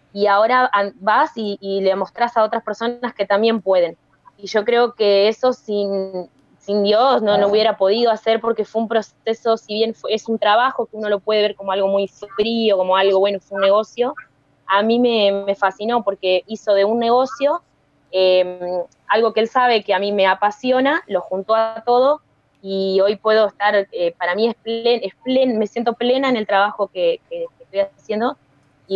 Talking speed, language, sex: 205 wpm, Spanish, female